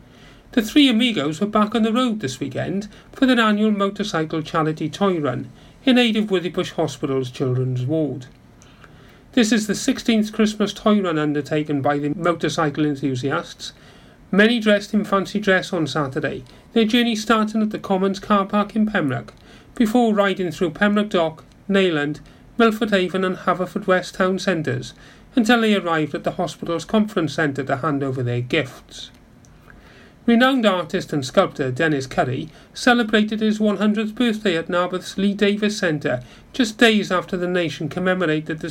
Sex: male